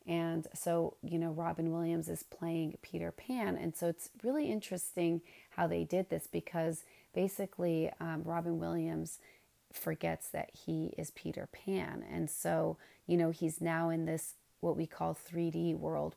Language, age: English, 30-49